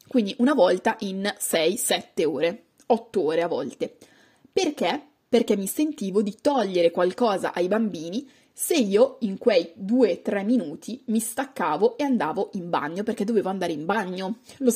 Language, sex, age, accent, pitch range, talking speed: Italian, female, 20-39, native, 190-250 Hz, 150 wpm